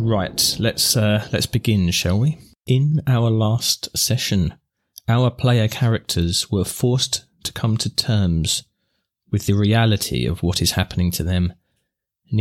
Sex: male